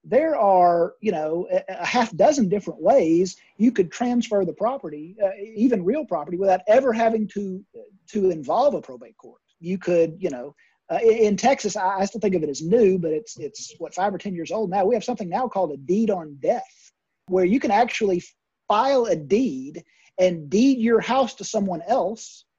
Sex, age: male, 40-59